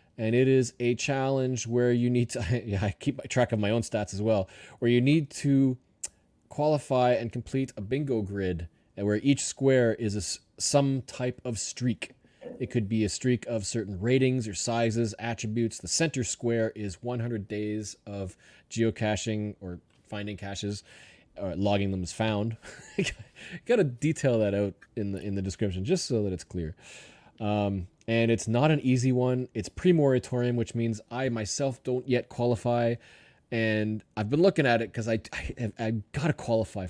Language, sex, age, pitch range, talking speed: English, male, 20-39, 100-125 Hz, 170 wpm